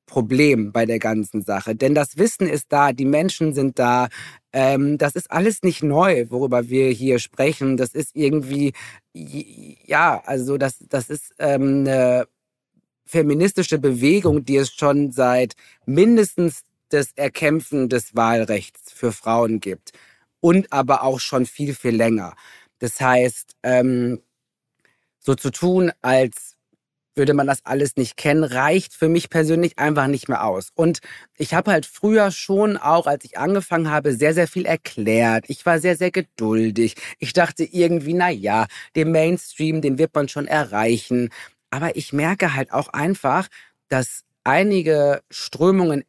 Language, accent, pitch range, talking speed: German, German, 125-165 Hz, 150 wpm